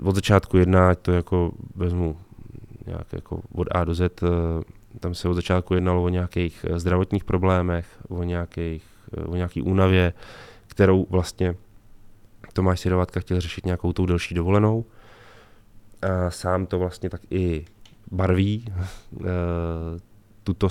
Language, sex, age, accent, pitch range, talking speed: Czech, male, 20-39, native, 90-105 Hz, 130 wpm